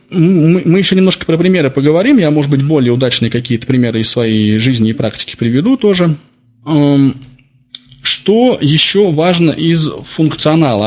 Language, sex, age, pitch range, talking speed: Russian, male, 20-39, 120-155 Hz, 140 wpm